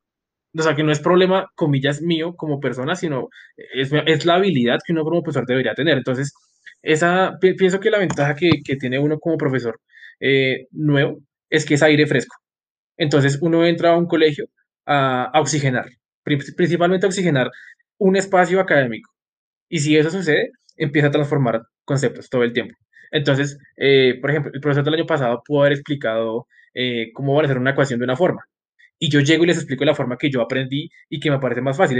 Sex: male